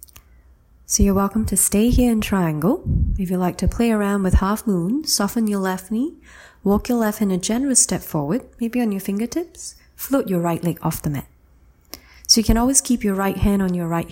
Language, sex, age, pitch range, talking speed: English, female, 30-49, 155-220 Hz, 215 wpm